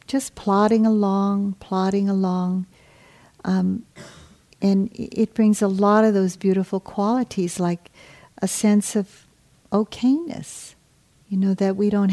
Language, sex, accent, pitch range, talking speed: English, female, American, 180-210 Hz, 125 wpm